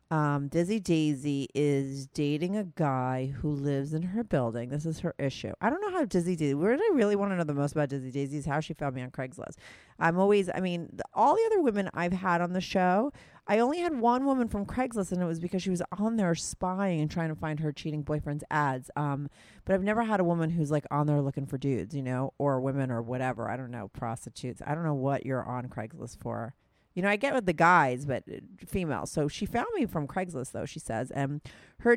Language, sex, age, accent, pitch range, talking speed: English, female, 30-49, American, 135-180 Hz, 240 wpm